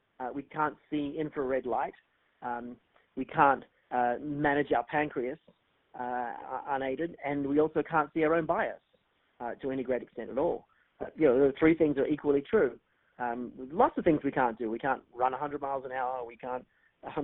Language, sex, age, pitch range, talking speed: English, male, 40-59, 130-165 Hz, 190 wpm